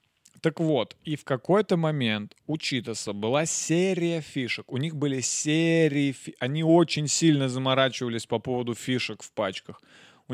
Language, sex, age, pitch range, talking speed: Russian, male, 20-39, 120-150 Hz, 145 wpm